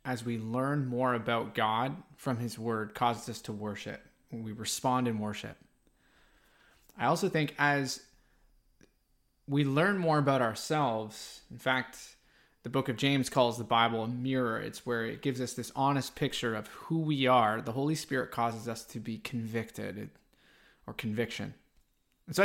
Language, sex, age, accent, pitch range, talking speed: English, male, 20-39, American, 120-160 Hz, 160 wpm